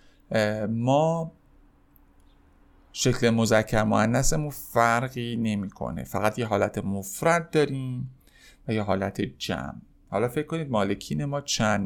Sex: male